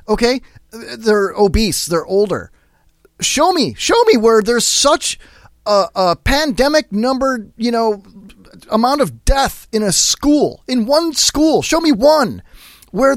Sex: male